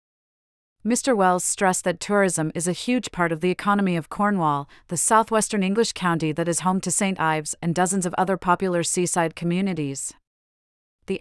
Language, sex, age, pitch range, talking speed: English, female, 40-59, 165-200 Hz, 170 wpm